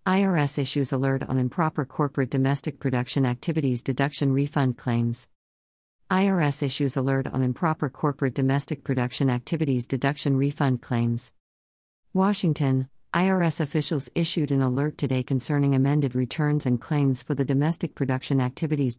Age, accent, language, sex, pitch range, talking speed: 50-69, American, English, female, 130-155 Hz, 130 wpm